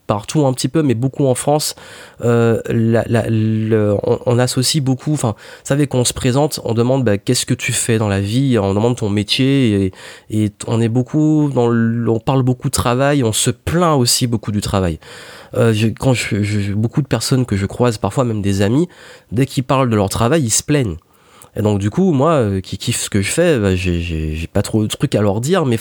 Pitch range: 105-140 Hz